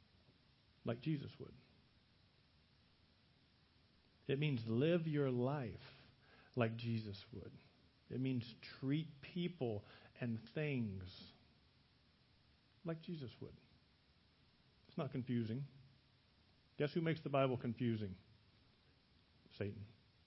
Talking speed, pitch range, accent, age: 90 wpm, 110-140 Hz, American, 50-69